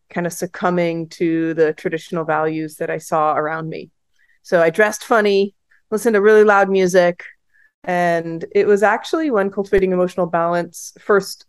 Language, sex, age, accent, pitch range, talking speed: English, female, 30-49, American, 170-200 Hz, 155 wpm